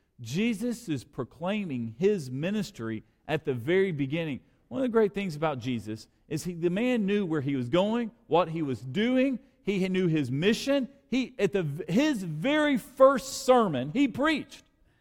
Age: 40-59